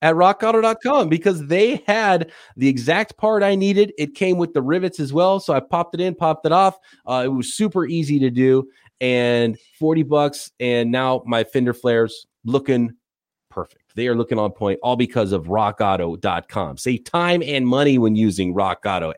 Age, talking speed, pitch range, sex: 30-49, 180 wpm, 120-170 Hz, male